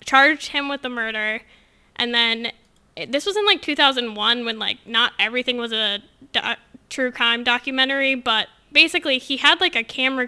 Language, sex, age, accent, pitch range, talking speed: English, female, 10-29, American, 225-265 Hz, 170 wpm